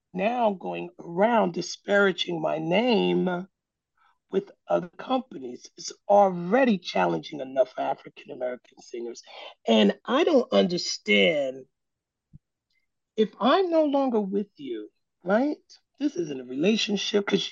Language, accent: English, American